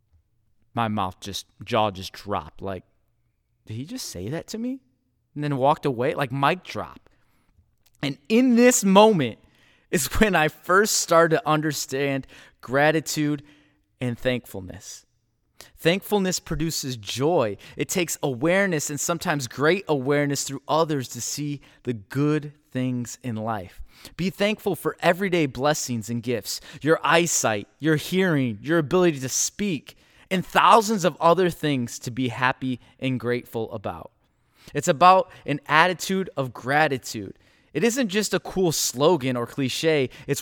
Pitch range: 125-175 Hz